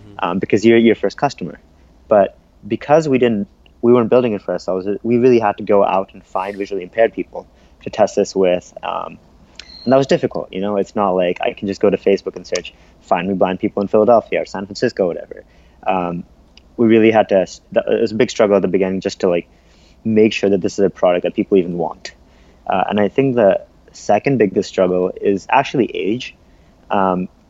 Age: 30-49